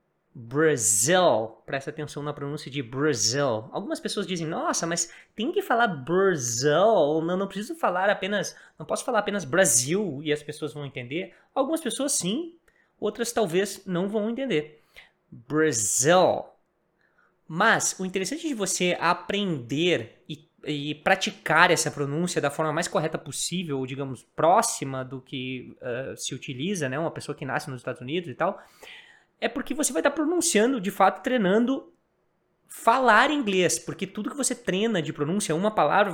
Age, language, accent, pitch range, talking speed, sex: 20-39, English, Brazilian, 150-205 Hz, 155 wpm, male